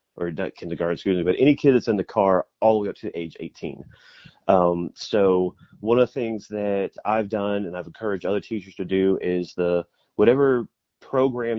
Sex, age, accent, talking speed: male, 30-49, American, 200 wpm